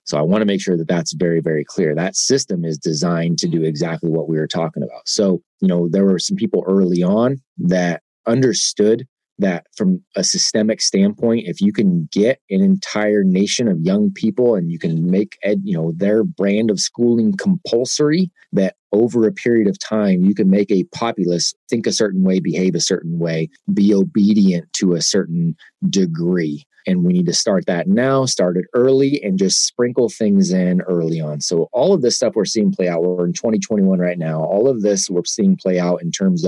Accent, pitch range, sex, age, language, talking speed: American, 85-115 Hz, male, 30-49, English, 205 wpm